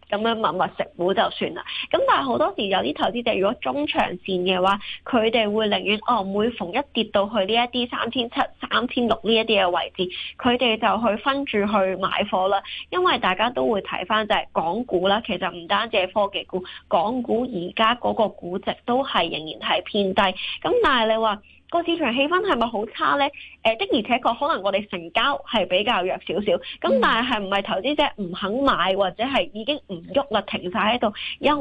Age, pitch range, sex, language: 20-39, 195-255 Hz, female, Chinese